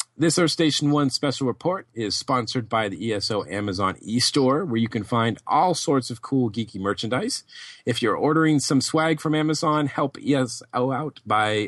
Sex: male